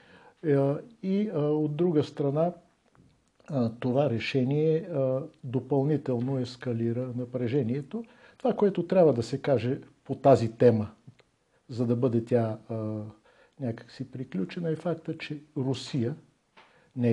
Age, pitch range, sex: 60-79, 115-140 Hz, male